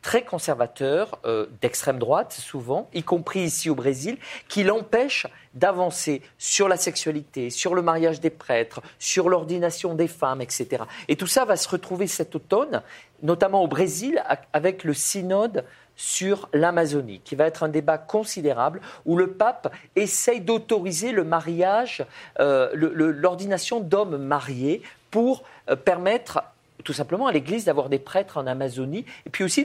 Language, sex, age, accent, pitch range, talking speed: Portuguese, male, 40-59, French, 140-190 Hz, 155 wpm